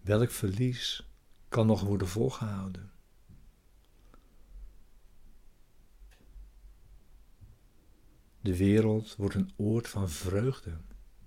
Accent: Dutch